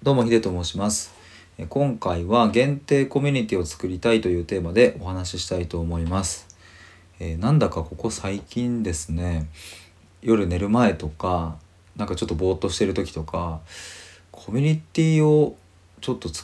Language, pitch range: Japanese, 80-105 Hz